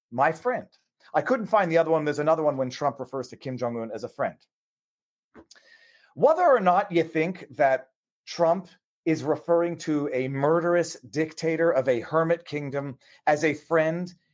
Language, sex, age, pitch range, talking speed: English, male, 40-59, 145-180 Hz, 165 wpm